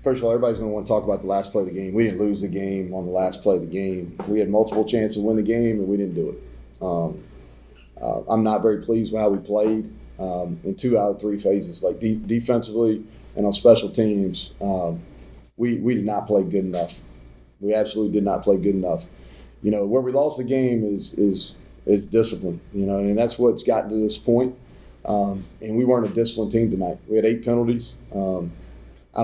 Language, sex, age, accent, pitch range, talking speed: English, male, 40-59, American, 95-115 Hz, 235 wpm